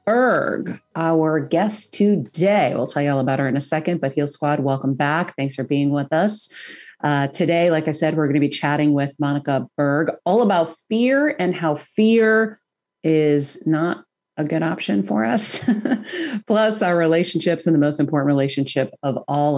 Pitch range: 145-180 Hz